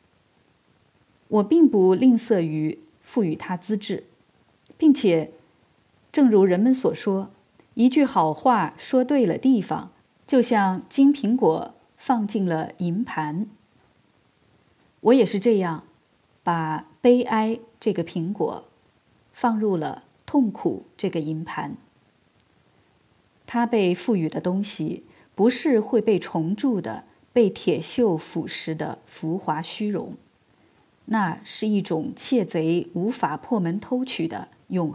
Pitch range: 170-235 Hz